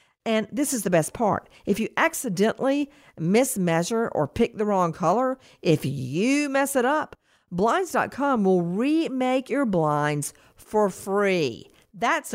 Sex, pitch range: female, 170-245 Hz